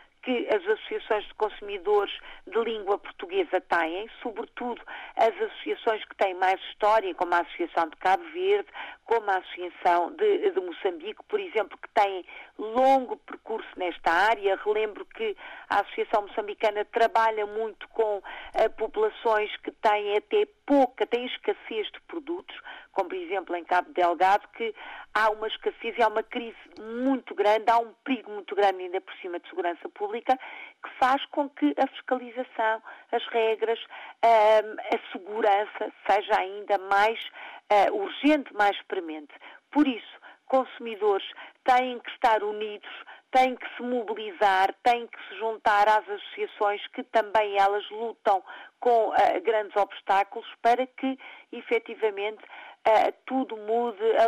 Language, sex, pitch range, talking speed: Portuguese, female, 205-290 Hz, 140 wpm